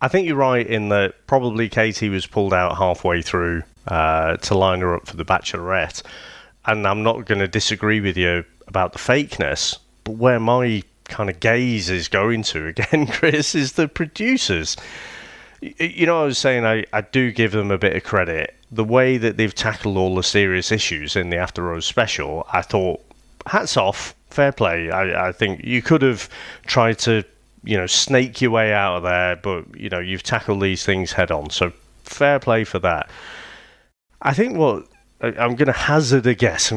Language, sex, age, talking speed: English, male, 30-49, 195 wpm